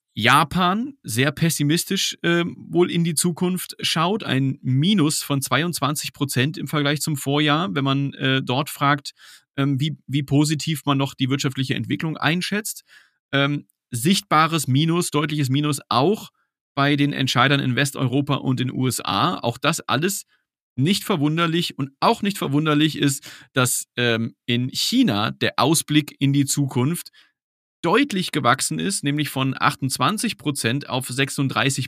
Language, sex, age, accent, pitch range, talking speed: German, male, 40-59, German, 130-155 Hz, 145 wpm